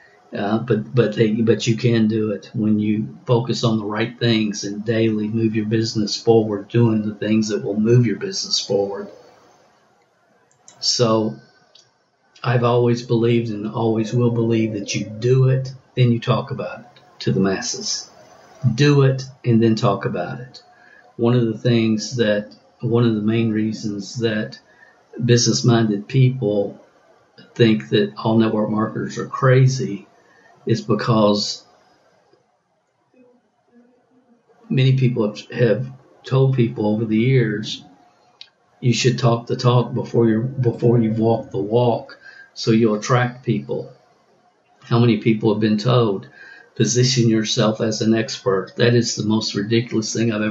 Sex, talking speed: male, 145 wpm